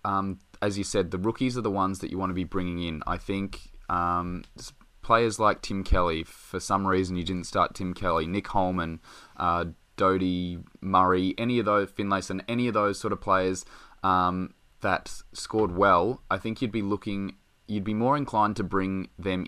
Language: English